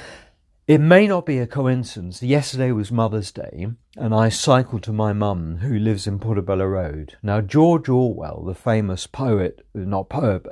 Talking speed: 165 wpm